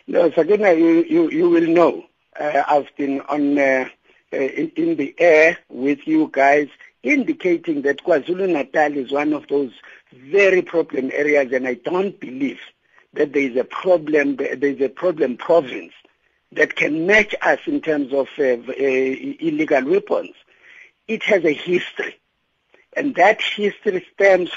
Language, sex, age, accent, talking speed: English, male, 60-79, South African, 155 wpm